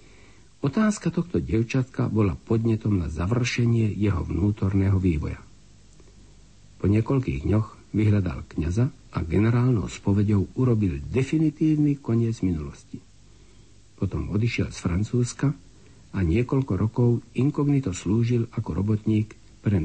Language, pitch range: Slovak, 95-120 Hz